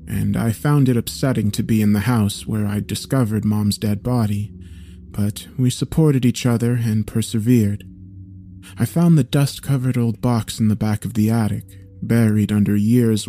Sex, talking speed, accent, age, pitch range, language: male, 170 wpm, American, 30-49, 100-120 Hz, English